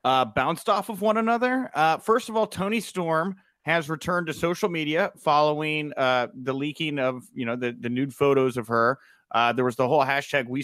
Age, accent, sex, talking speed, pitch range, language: 30-49, American, male, 210 wpm, 140-215 Hz, English